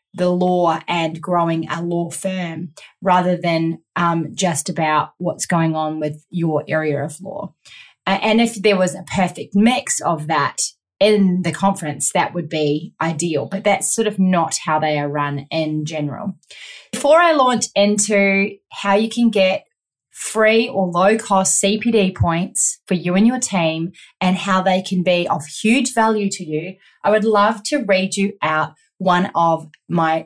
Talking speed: 175 wpm